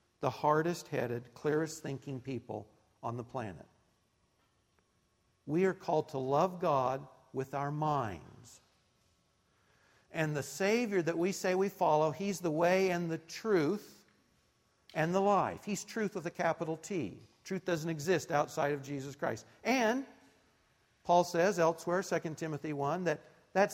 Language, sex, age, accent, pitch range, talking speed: English, male, 50-69, American, 145-195 Hz, 140 wpm